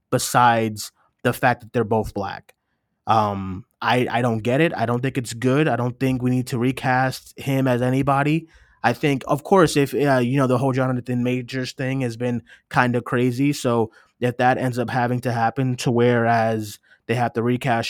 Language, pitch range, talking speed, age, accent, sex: English, 115-130 Hz, 200 wpm, 20-39, American, male